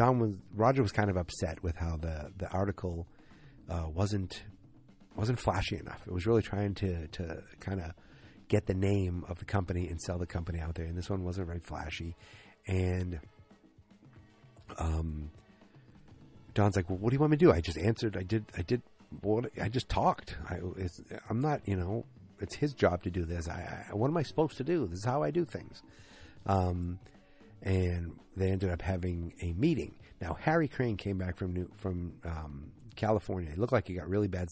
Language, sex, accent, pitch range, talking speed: English, male, American, 85-105 Hz, 205 wpm